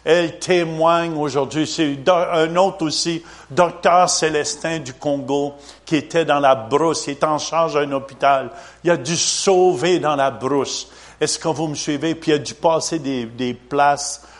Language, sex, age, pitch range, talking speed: French, male, 50-69, 140-195 Hz, 175 wpm